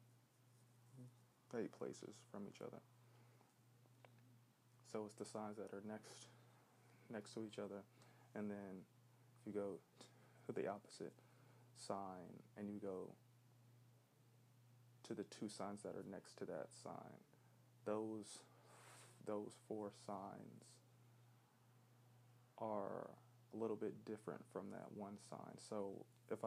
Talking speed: 120 wpm